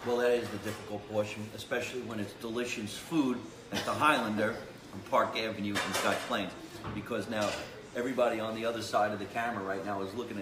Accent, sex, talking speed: American, male, 195 wpm